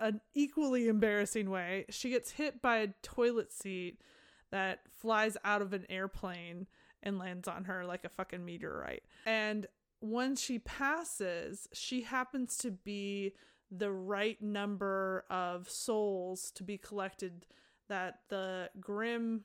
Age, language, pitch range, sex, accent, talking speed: 20-39, English, 190-220 Hz, female, American, 135 wpm